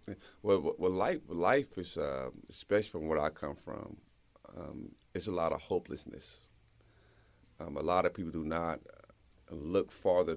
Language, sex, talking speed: English, male, 155 wpm